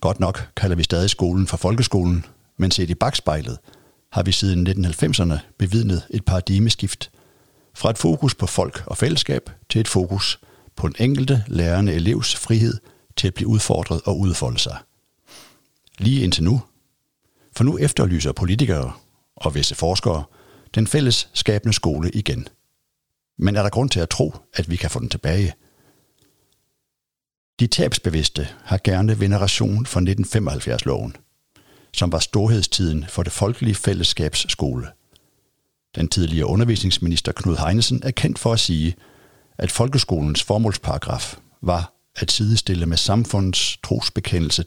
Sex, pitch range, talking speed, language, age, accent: male, 85-110 Hz, 140 wpm, Danish, 60-79, native